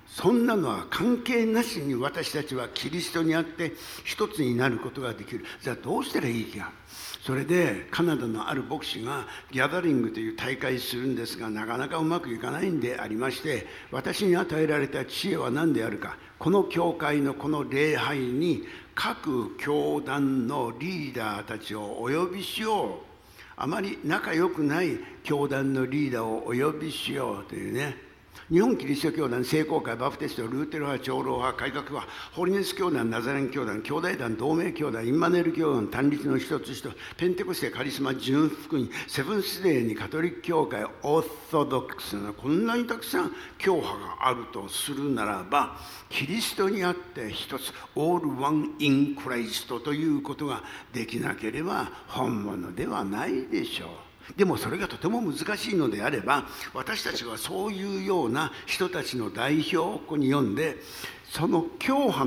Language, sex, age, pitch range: Japanese, male, 60-79, 130-170 Hz